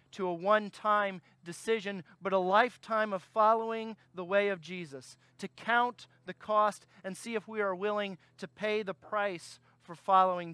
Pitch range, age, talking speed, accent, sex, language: 150-200 Hz, 40-59, 165 wpm, American, male, English